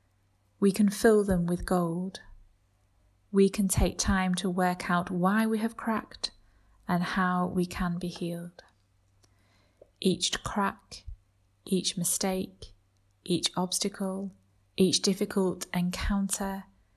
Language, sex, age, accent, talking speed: English, female, 30-49, British, 115 wpm